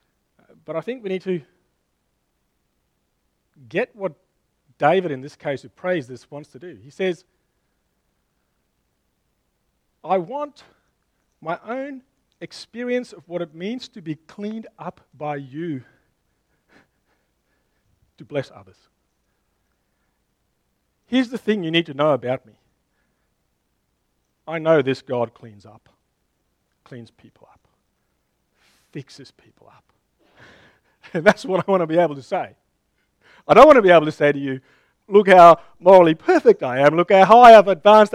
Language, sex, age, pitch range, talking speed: English, male, 40-59, 130-190 Hz, 140 wpm